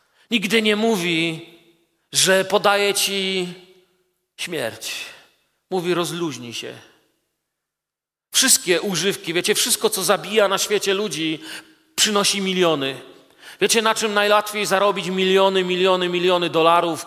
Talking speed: 105 wpm